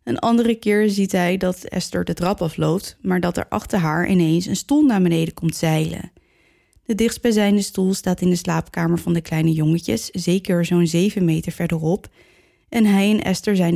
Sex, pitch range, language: female, 170-205 Hz, Dutch